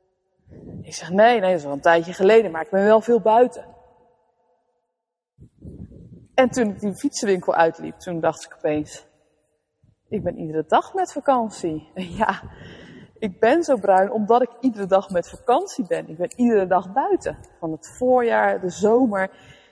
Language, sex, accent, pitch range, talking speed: Dutch, female, Dutch, 185-250 Hz, 165 wpm